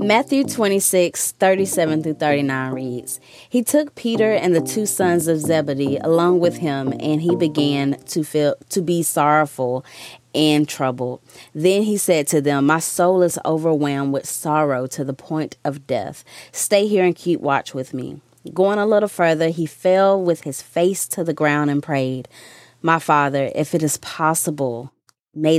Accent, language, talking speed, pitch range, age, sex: American, English, 170 wpm, 145-185 Hz, 20-39, female